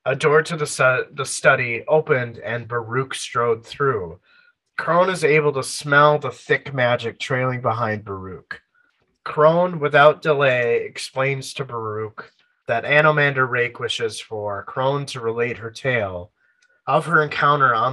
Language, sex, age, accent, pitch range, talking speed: English, male, 30-49, American, 115-155 Hz, 145 wpm